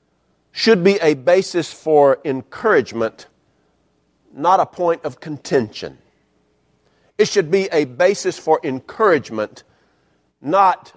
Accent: American